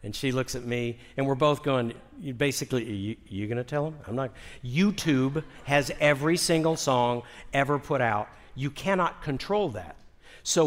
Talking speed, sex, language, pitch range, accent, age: 175 wpm, male, English, 120-150 Hz, American, 50-69